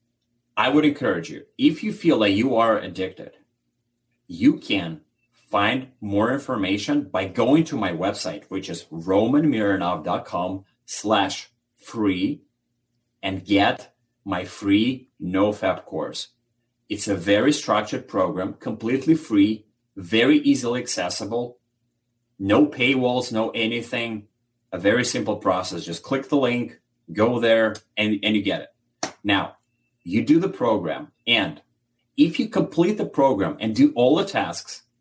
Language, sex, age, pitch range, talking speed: English, male, 30-49, 100-130 Hz, 135 wpm